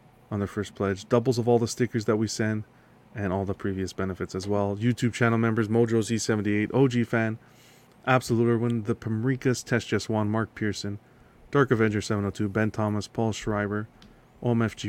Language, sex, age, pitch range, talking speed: English, male, 30-49, 105-120 Hz, 170 wpm